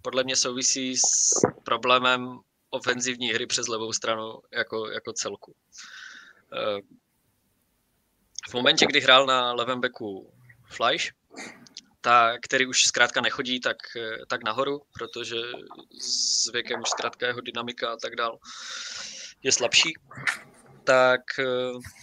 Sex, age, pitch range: male, 20-39, 120-135 Hz